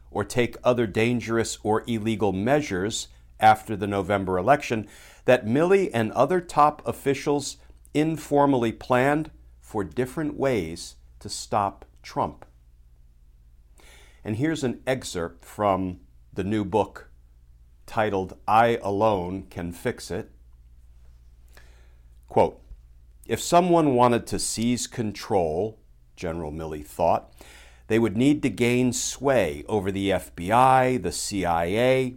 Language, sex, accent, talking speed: English, male, American, 110 wpm